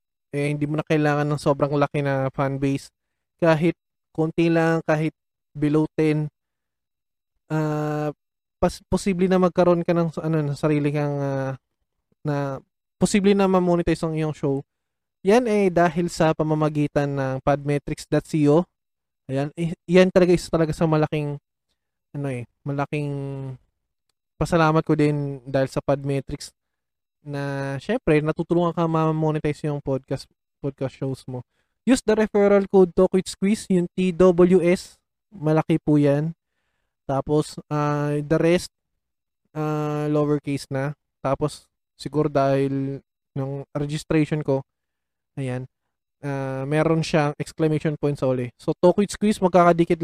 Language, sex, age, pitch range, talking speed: Filipino, male, 20-39, 140-165 Hz, 125 wpm